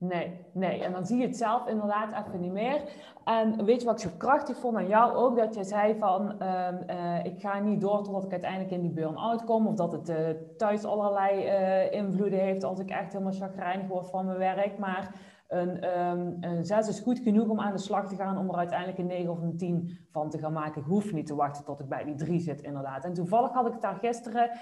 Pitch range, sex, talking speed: 170-215 Hz, female, 250 wpm